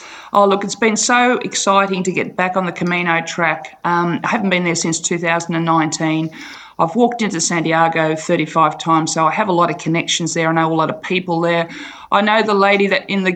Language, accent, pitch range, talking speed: English, Australian, 170-205 Hz, 215 wpm